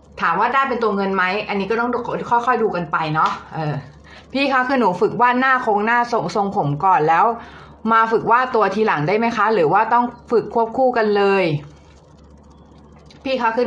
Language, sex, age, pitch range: Thai, female, 20-39, 170-250 Hz